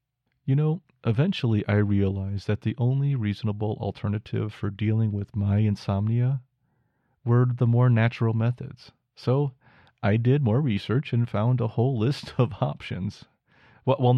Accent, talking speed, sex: American, 140 wpm, male